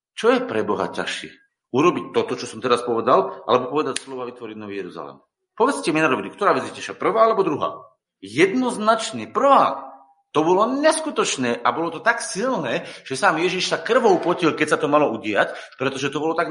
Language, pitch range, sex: Slovak, 110-170 Hz, male